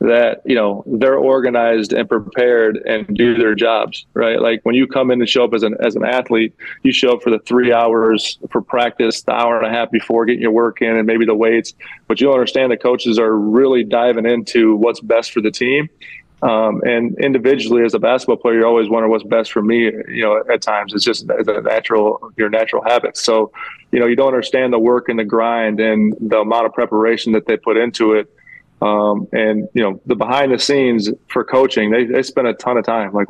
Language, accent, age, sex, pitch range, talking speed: English, American, 20-39, male, 110-120 Hz, 230 wpm